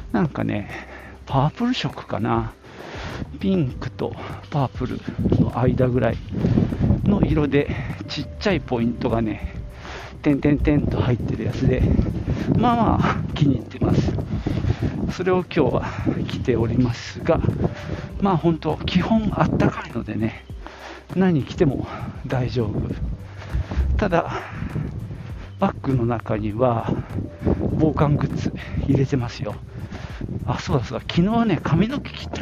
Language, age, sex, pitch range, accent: Japanese, 50-69, male, 100-135 Hz, native